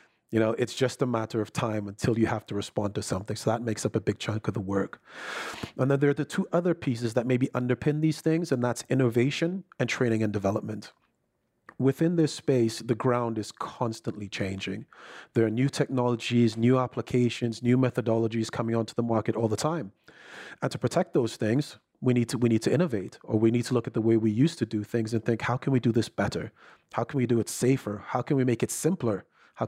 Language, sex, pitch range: English, male, 110-130 Hz